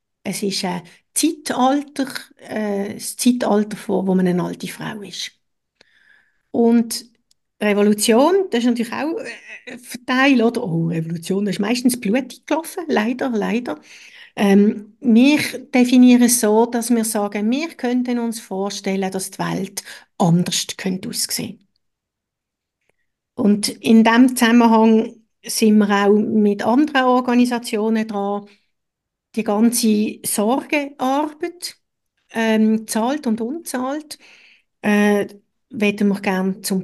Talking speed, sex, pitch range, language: 120 wpm, female, 205-260 Hz, German